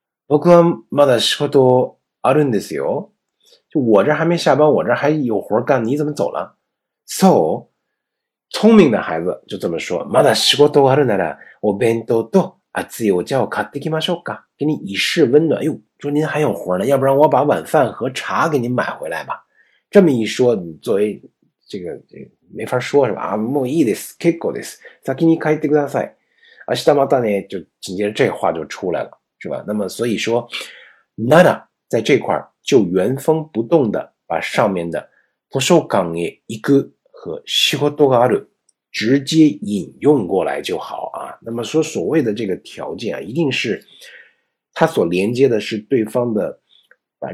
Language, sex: Chinese, male